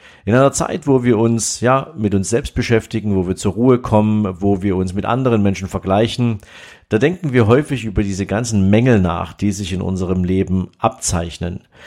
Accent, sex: German, male